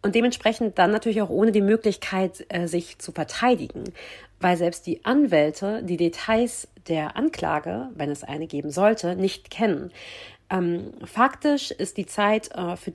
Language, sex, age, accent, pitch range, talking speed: German, female, 40-59, German, 175-215 Hz, 155 wpm